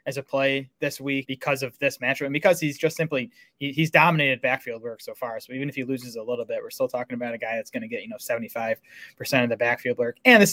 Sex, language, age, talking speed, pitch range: male, English, 20-39, 280 wpm, 125-155 Hz